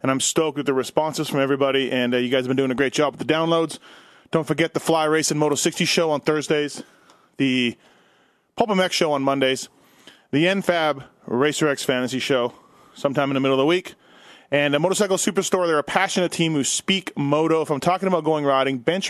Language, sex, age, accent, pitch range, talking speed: English, male, 30-49, American, 140-175 Hz, 215 wpm